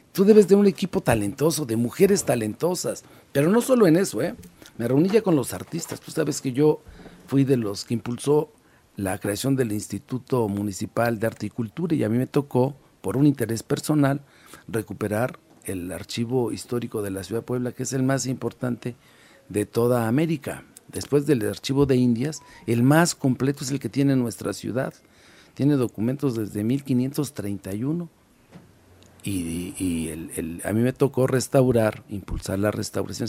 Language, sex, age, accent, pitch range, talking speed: Spanish, male, 50-69, Mexican, 105-135 Hz, 170 wpm